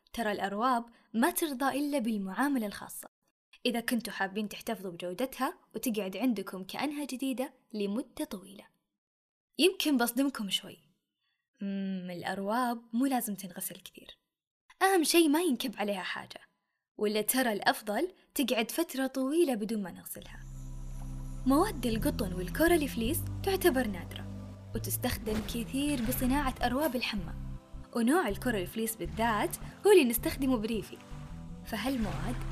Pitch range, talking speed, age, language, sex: 195-270 Hz, 115 wpm, 10-29, Arabic, female